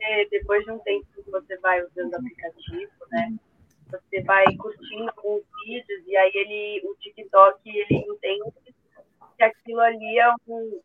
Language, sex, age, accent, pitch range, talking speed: Portuguese, female, 20-39, Brazilian, 195-250 Hz, 160 wpm